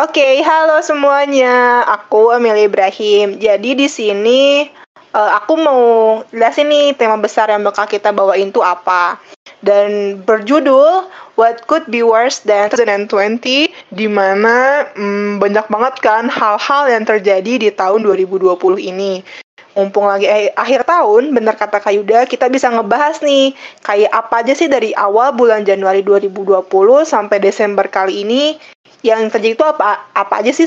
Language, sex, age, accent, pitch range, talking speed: Indonesian, female, 20-39, native, 205-265 Hz, 145 wpm